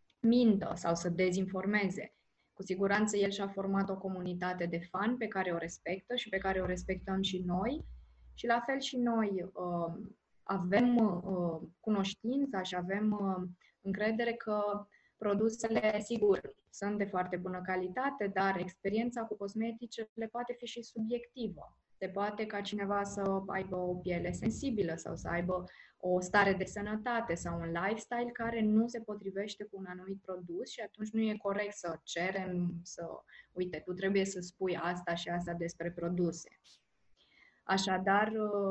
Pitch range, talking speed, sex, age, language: 180-210 Hz, 150 wpm, female, 20-39, Romanian